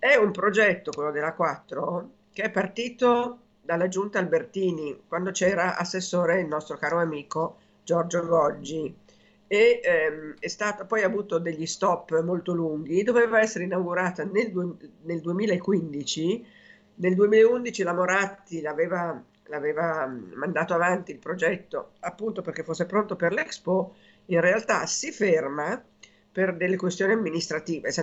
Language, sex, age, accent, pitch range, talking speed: Italian, female, 50-69, native, 160-210 Hz, 125 wpm